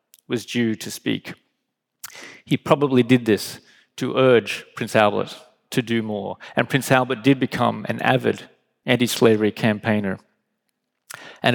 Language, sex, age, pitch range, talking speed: English, male, 30-49, 110-130 Hz, 130 wpm